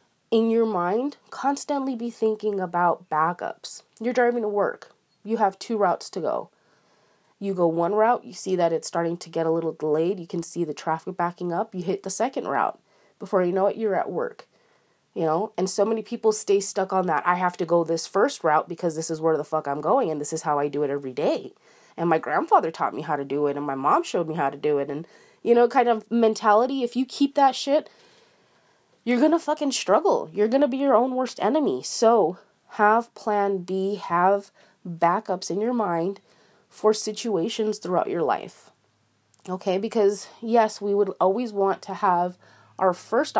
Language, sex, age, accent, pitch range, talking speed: English, female, 30-49, American, 170-225 Hz, 210 wpm